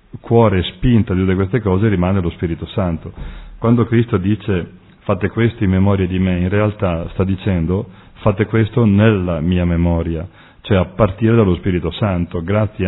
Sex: male